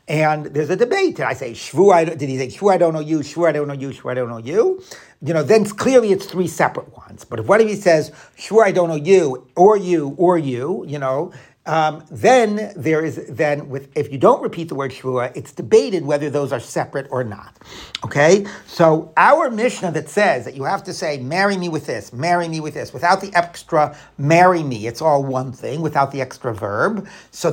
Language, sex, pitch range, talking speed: English, male, 145-195 Hz, 230 wpm